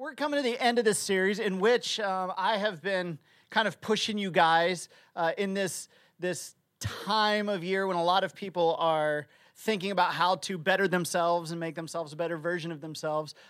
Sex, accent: male, American